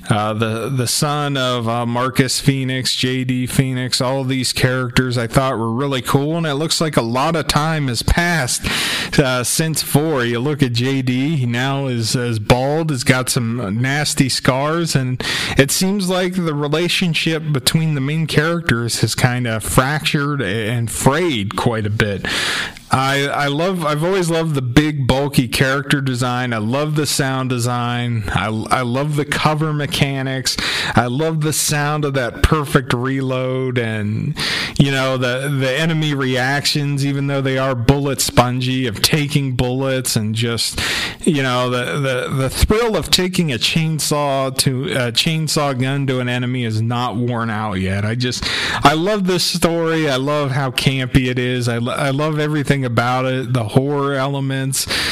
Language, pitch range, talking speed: English, 125-150 Hz, 170 wpm